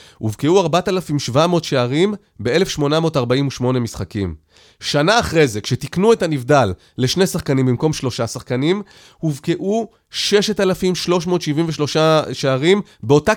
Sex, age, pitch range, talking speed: male, 30-49, 120-170 Hz, 90 wpm